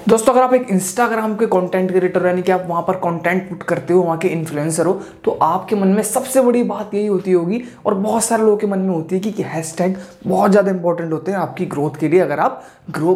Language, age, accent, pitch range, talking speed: Hindi, 20-39, native, 160-205 Hz, 255 wpm